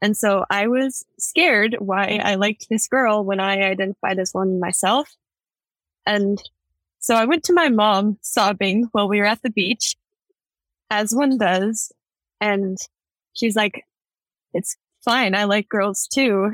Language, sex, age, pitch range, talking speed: English, female, 10-29, 200-240 Hz, 150 wpm